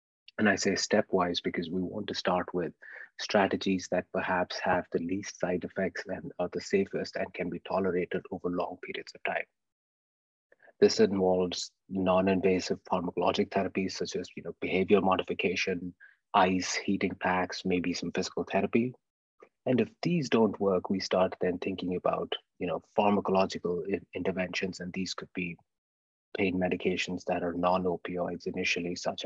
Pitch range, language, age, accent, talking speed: 90-100 Hz, English, 30-49, Indian, 150 wpm